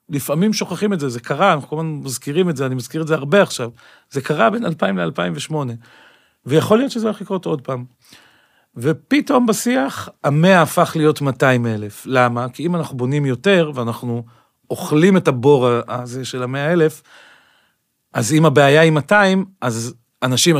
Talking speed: 170 wpm